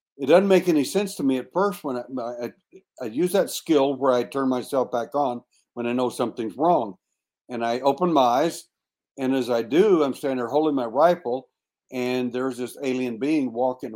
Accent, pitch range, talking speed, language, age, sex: American, 120-150 Hz, 205 wpm, English, 60-79, male